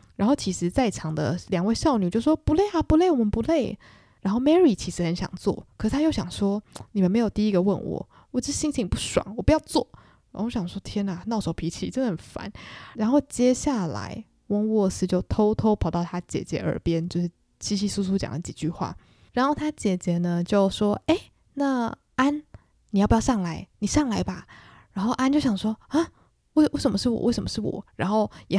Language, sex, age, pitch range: Chinese, female, 20-39, 180-235 Hz